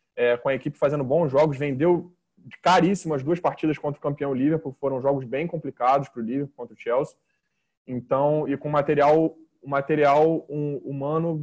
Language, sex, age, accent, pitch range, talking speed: Portuguese, male, 20-39, Brazilian, 135-165 Hz, 180 wpm